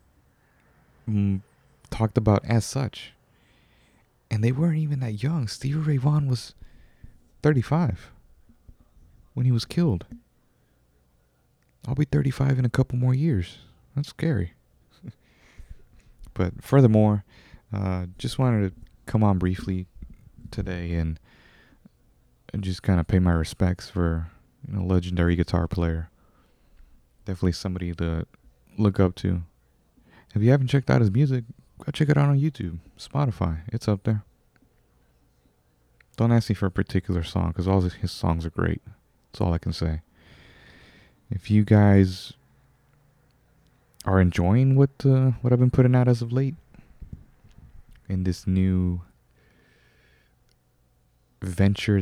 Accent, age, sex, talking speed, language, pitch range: American, 30-49, male, 130 wpm, English, 90-125 Hz